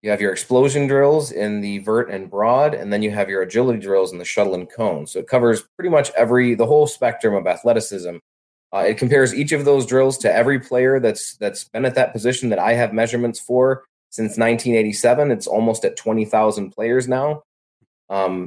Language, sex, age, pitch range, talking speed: English, male, 20-39, 105-130 Hz, 205 wpm